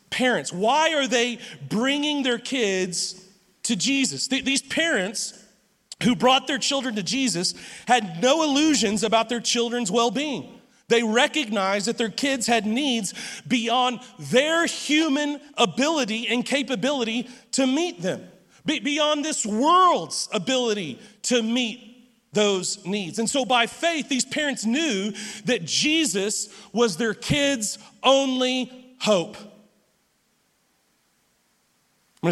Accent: American